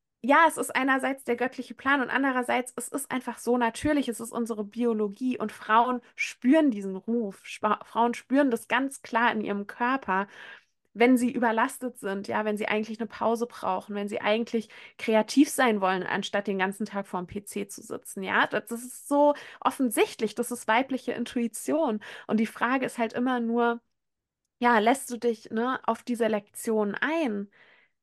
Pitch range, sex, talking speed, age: 205-250 Hz, female, 180 wpm, 20-39